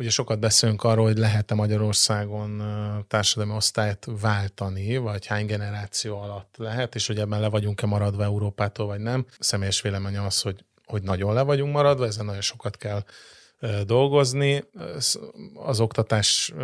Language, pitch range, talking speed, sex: Hungarian, 105-120 Hz, 150 wpm, male